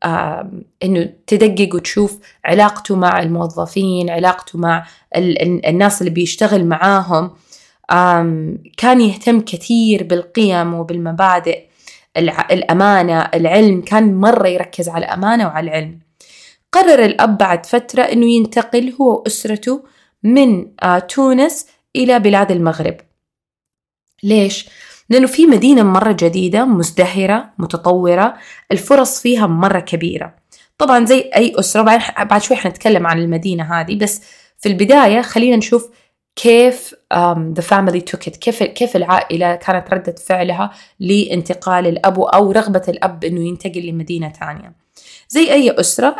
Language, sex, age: Arabic, female, 20-39